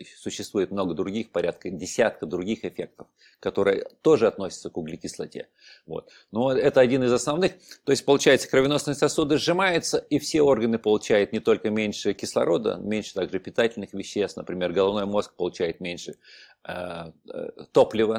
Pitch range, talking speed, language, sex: 105-135 Hz, 135 wpm, Russian, male